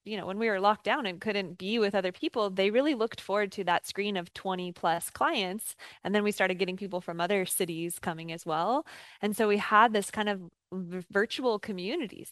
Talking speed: 220 wpm